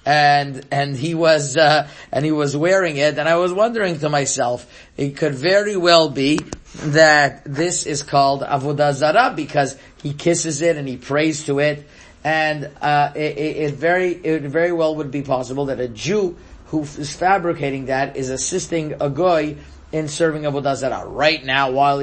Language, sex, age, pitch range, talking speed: English, male, 30-49, 135-155 Hz, 180 wpm